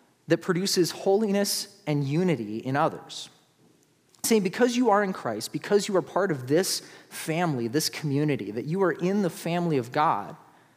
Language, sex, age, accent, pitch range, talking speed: English, male, 30-49, American, 145-185 Hz, 165 wpm